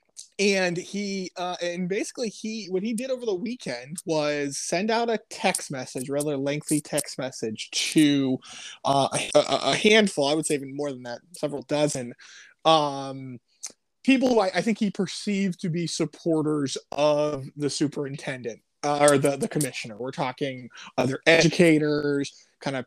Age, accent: 20-39, American